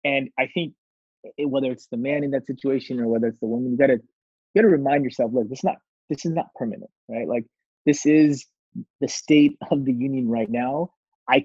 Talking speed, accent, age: 195 wpm, American, 20-39